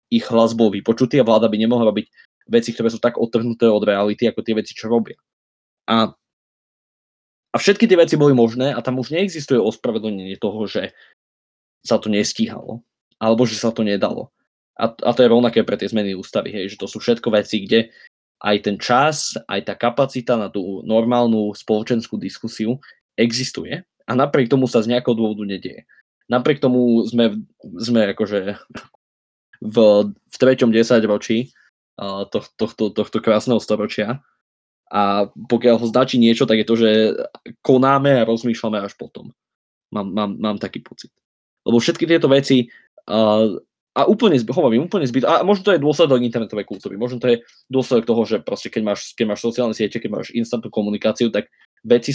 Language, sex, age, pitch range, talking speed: Slovak, male, 20-39, 105-120 Hz, 170 wpm